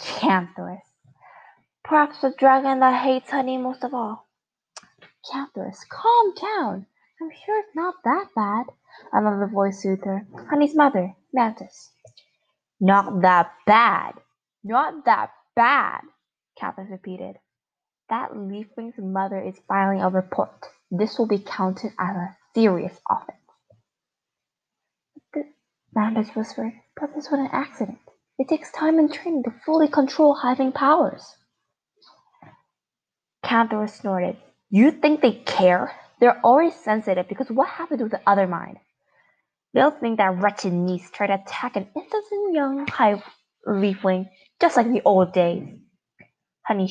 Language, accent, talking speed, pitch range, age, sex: English, American, 130 wpm, 195-280 Hz, 20-39, female